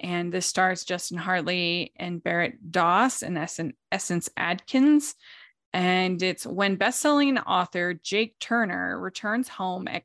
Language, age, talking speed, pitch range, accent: English, 20-39, 125 wpm, 175-205 Hz, American